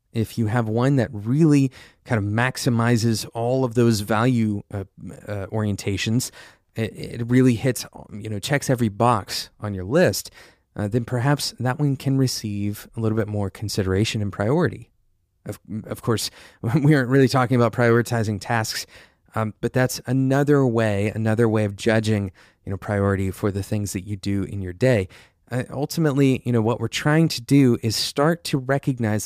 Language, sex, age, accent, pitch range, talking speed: English, male, 30-49, American, 105-130 Hz, 175 wpm